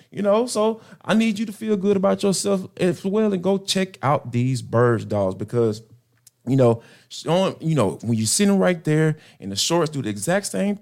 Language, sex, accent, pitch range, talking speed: English, male, American, 120-175 Hz, 210 wpm